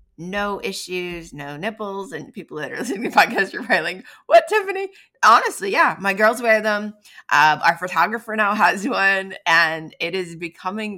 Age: 20-39